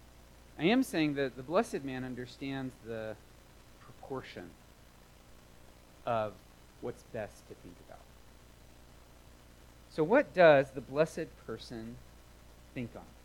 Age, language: 40-59, English